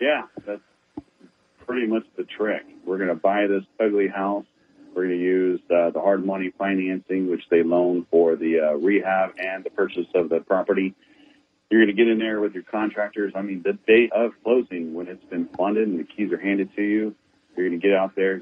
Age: 40-59